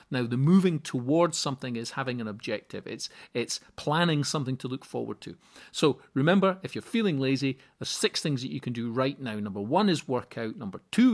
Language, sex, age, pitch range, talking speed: English, male, 40-59, 125-160 Hz, 210 wpm